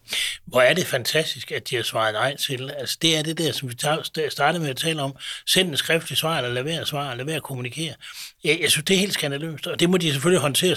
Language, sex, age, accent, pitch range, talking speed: Danish, male, 60-79, native, 135-175 Hz, 255 wpm